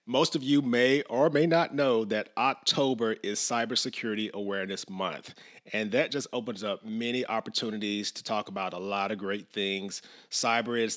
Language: English